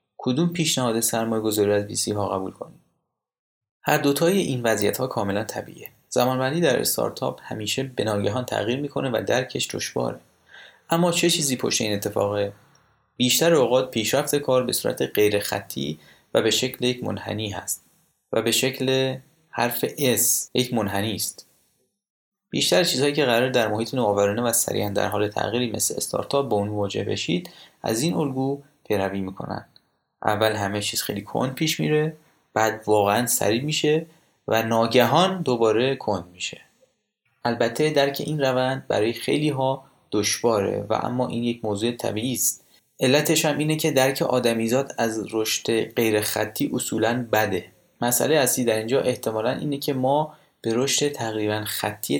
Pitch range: 105-140 Hz